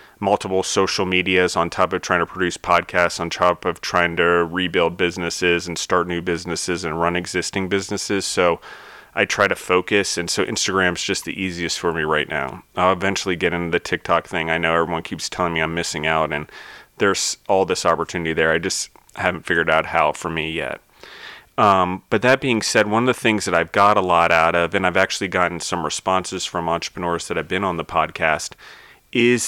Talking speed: 210 wpm